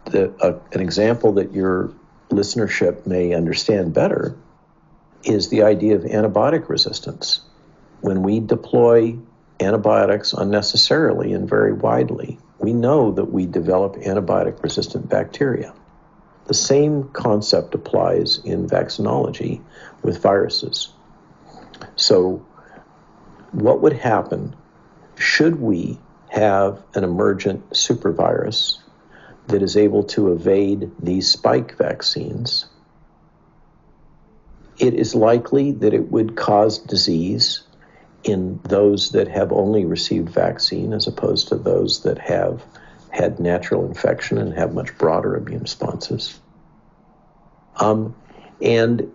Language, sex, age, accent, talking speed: English, male, 60-79, American, 105 wpm